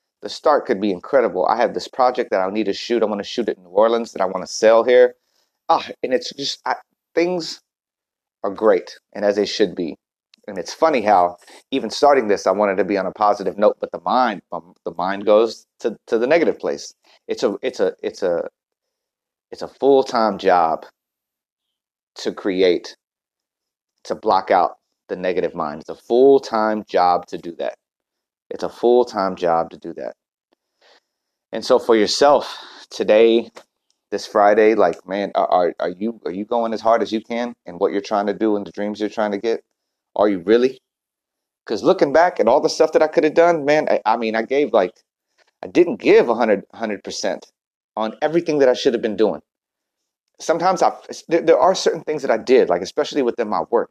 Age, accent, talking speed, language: 30-49, American, 210 wpm, English